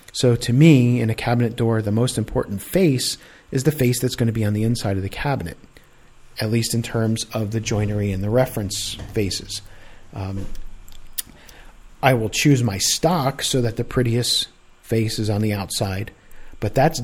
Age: 40-59